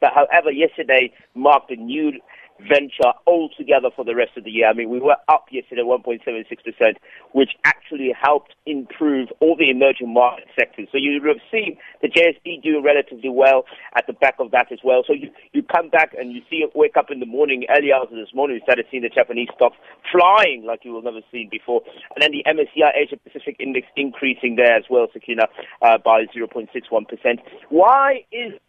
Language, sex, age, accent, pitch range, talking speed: English, male, 50-69, British, 125-175 Hz, 215 wpm